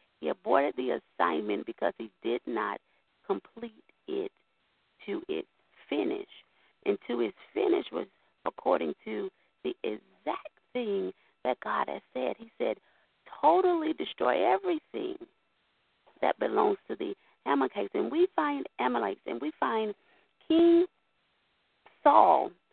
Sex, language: female, English